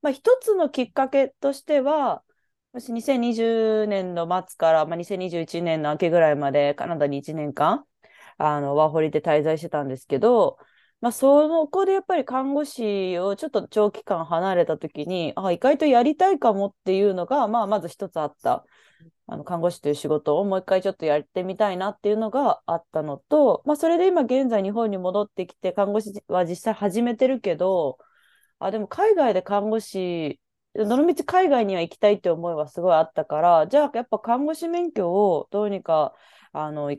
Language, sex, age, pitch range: Japanese, female, 20-39, 165-255 Hz